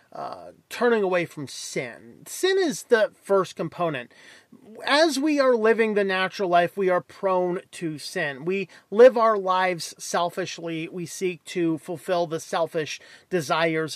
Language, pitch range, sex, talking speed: English, 165-225 Hz, male, 145 wpm